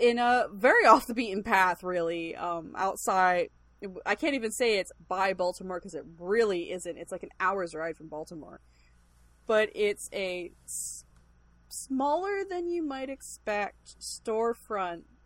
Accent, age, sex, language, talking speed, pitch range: American, 20-39, female, English, 120 wpm, 180-245 Hz